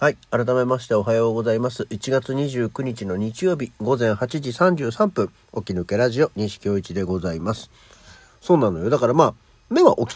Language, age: Japanese, 50-69